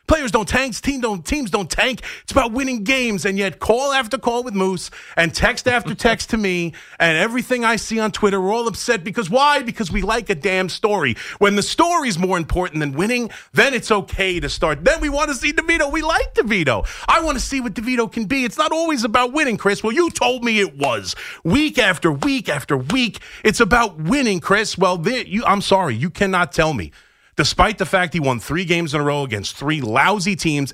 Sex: male